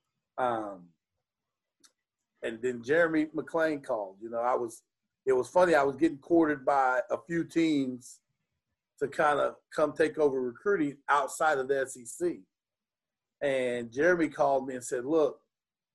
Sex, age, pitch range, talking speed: male, 40-59, 125-160 Hz, 145 wpm